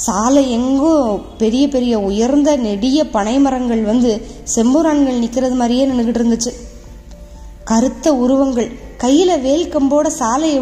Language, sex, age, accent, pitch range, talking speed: Tamil, female, 20-39, native, 215-280 Hz, 100 wpm